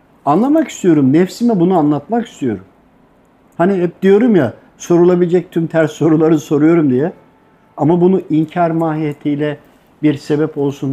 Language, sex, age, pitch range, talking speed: Turkish, male, 60-79, 130-185 Hz, 125 wpm